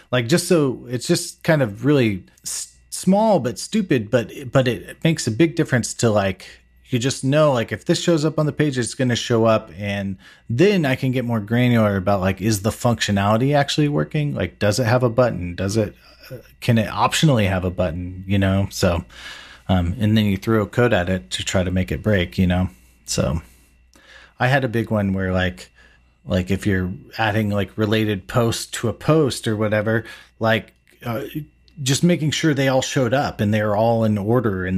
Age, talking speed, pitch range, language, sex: 30-49, 210 wpm, 90-120 Hz, English, male